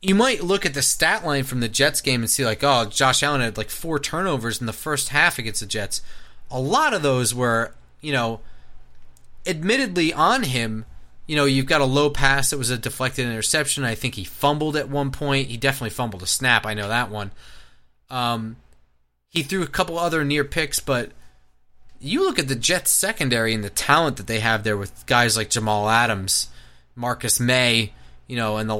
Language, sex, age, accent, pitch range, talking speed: English, male, 30-49, American, 105-145 Hz, 205 wpm